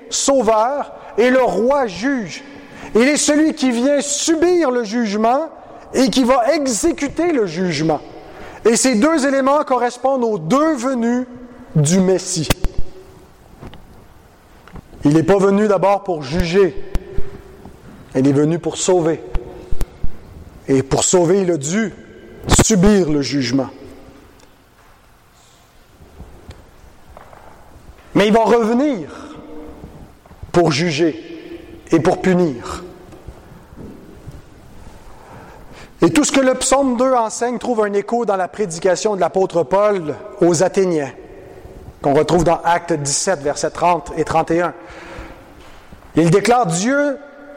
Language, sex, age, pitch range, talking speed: English, male, 40-59, 170-260 Hz, 115 wpm